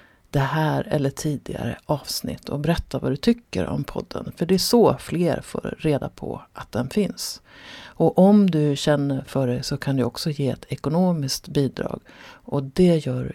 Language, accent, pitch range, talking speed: Swedish, native, 135-180 Hz, 180 wpm